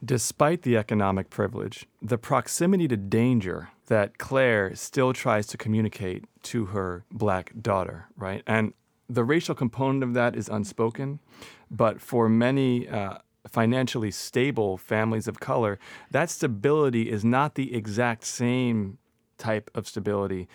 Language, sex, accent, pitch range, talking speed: English, male, American, 105-125 Hz, 135 wpm